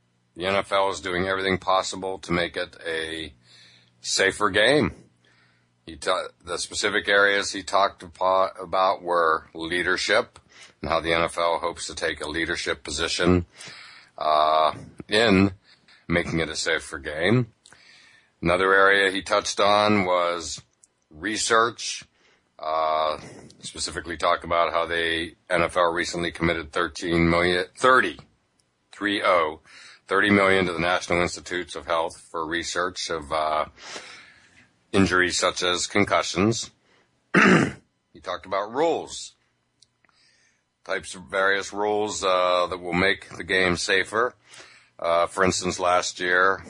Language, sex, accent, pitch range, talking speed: English, male, American, 80-95 Hz, 120 wpm